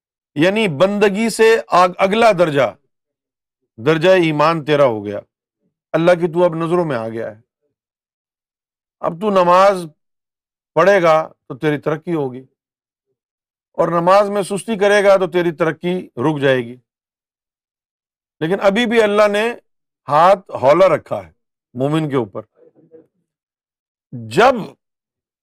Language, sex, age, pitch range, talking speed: Urdu, male, 50-69, 145-200 Hz, 125 wpm